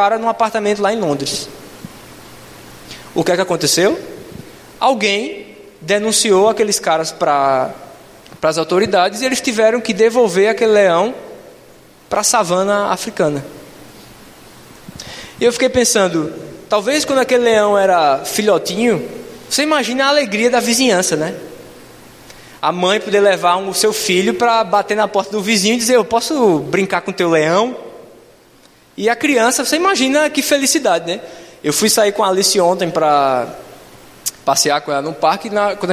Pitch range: 175-235 Hz